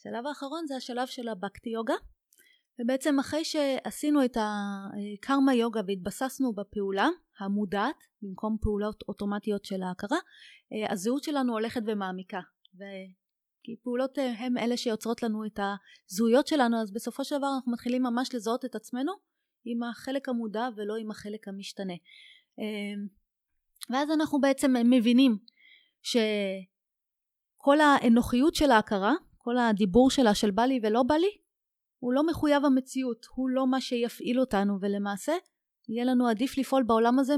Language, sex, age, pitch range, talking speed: Hebrew, female, 30-49, 215-270 Hz, 135 wpm